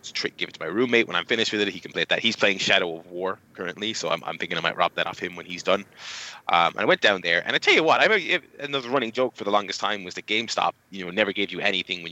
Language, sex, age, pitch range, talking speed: English, male, 20-39, 100-135 Hz, 310 wpm